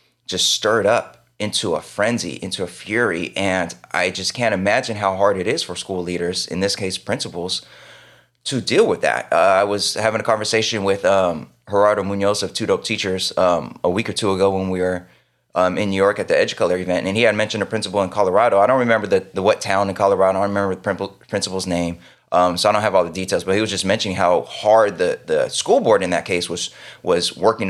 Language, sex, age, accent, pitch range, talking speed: English, male, 20-39, American, 90-110 Hz, 235 wpm